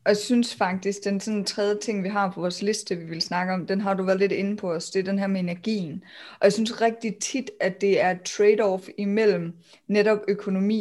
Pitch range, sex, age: 185-220 Hz, female, 20-39